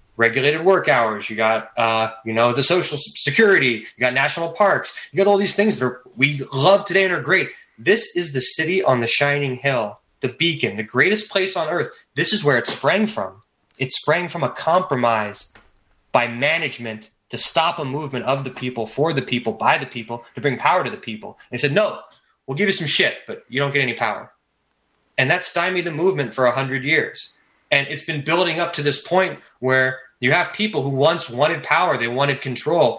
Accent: American